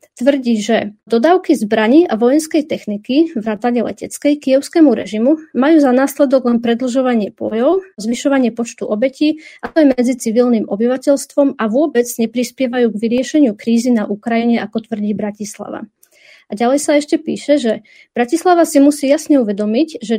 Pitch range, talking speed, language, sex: 225-290 Hz, 145 wpm, Slovak, female